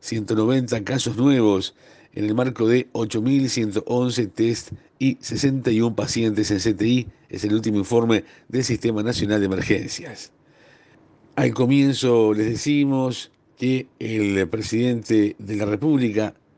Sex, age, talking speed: male, 50-69, 120 wpm